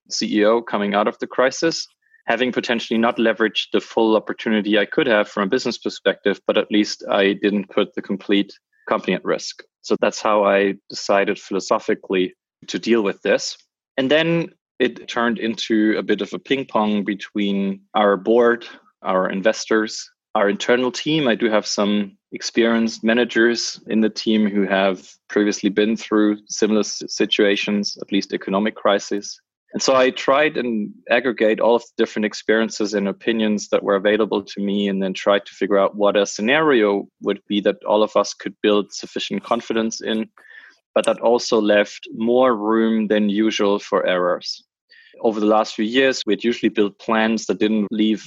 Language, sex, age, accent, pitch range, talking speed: English, male, 20-39, German, 100-115 Hz, 175 wpm